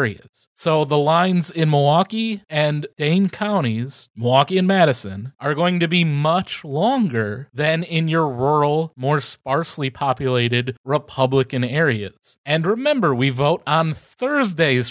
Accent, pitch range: American, 150-215 Hz